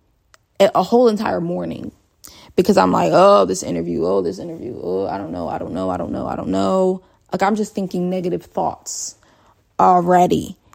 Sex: female